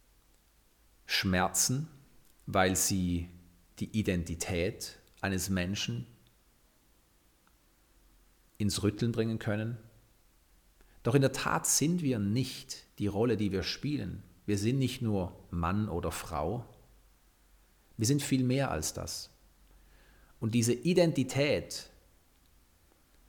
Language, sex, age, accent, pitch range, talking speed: German, male, 40-59, German, 90-115 Hz, 100 wpm